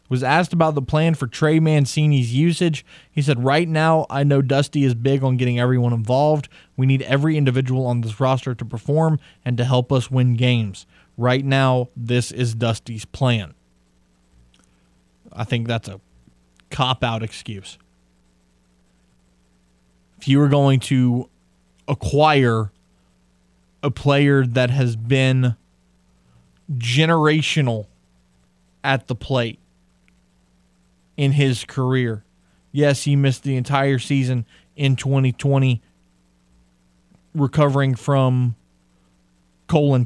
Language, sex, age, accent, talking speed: English, male, 20-39, American, 115 wpm